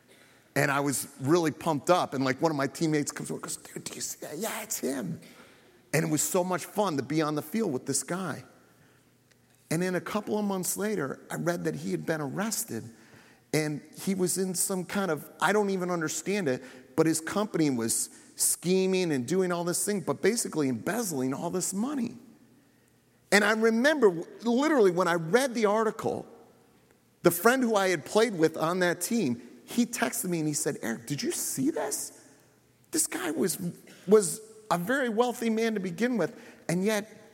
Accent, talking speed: American, 200 wpm